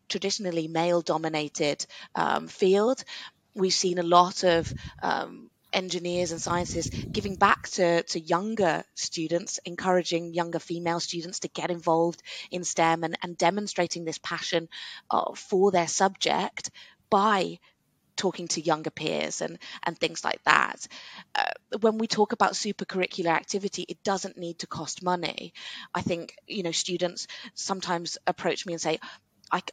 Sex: female